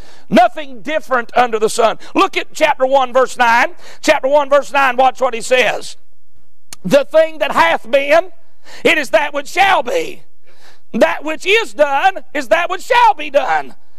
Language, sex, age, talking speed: English, male, 40-59, 170 wpm